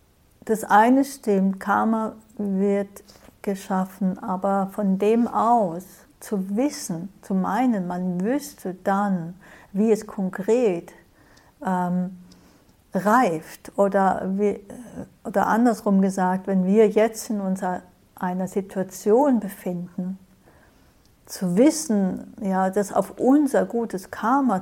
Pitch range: 185-215 Hz